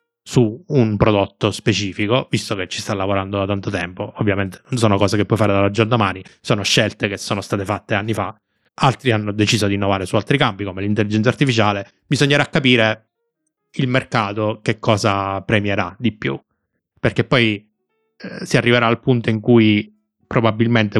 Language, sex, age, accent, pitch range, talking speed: Italian, male, 20-39, native, 100-115 Hz, 170 wpm